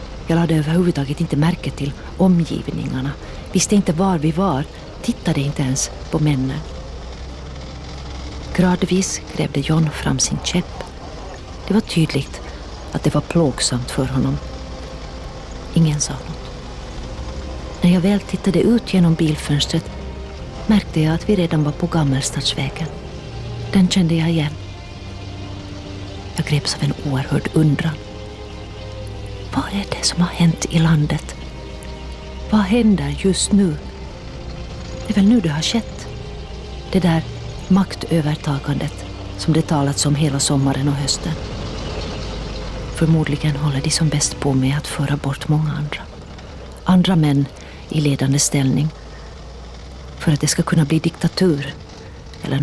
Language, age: Swedish, 40-59